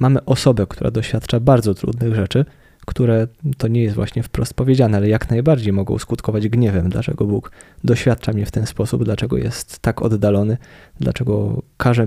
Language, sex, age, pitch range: Polish, male, 20-39, 115-140 Hz